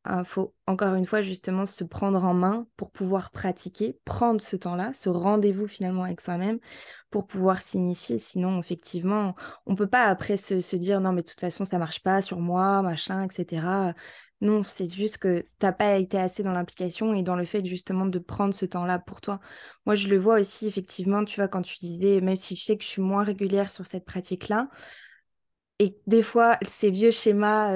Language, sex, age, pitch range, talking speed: French, female, 20-39, 185-215 Hz, 220 wpm